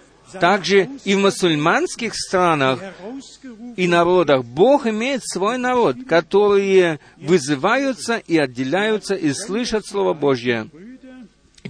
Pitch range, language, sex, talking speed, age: 160-215 Hz, Russian, male, 105 wpm, 50-69